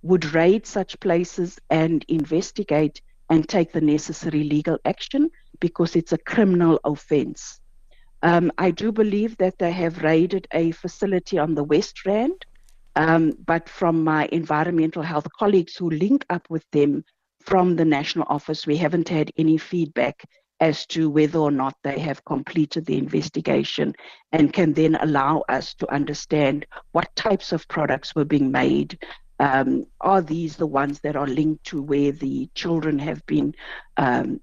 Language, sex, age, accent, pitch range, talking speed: English, female, 60-79, South African, 150-185 Hz, 155 wpm